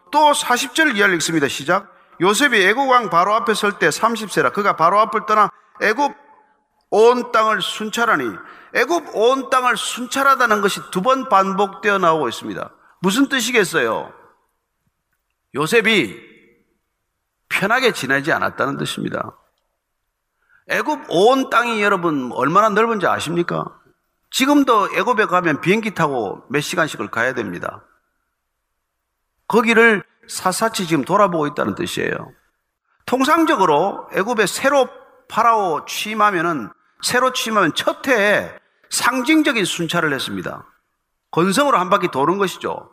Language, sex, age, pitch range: Korean, male, 40-59, 195-265 Hz